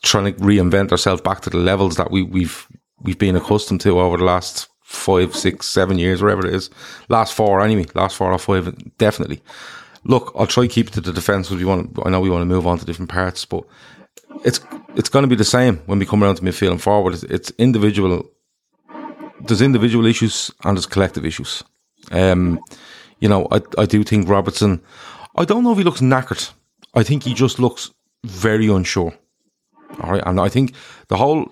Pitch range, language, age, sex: 95-115 Hz, English, 30-49, male